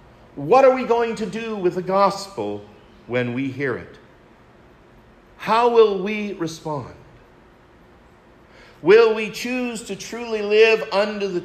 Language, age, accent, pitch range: English, 50-69, American, 130-195 Hz